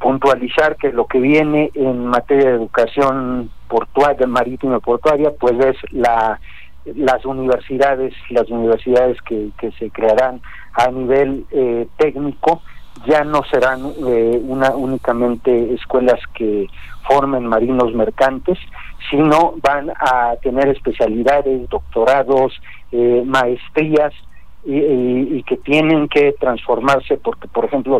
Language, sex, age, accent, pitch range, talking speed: Spanish, male, 50-69, Mexican, 120-145 Hz, 120 wpm